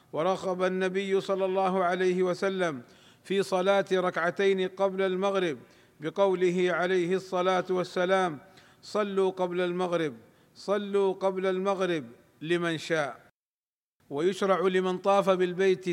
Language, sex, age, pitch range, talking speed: Arabic, male, 50-69, 180-195 Hz, 100 wpm